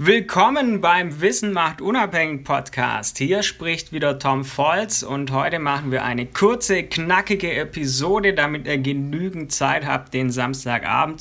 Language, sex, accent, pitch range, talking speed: German, male, German, 135-170 Hz, 140 wpm